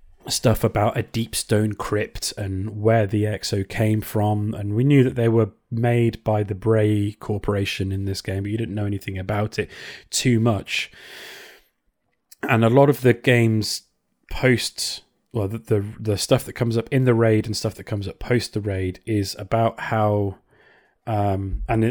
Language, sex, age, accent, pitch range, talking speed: English, male, 20-39, British, 100-120 Hz, 180 wpm